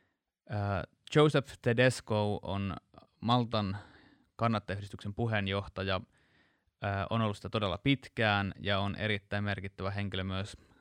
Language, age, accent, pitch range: Finnish, 20-39, native, 100-115 Hz